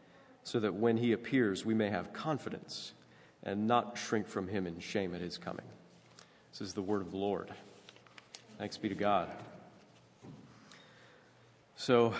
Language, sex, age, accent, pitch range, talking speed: English, male, 30-49, American, 105-115 Hz, 150 wpm